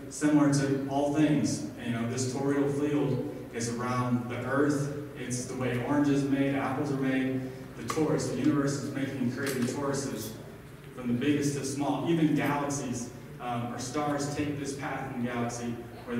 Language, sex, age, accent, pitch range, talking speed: English, male, 20-39, American, 120-140 Hz, 180 wpm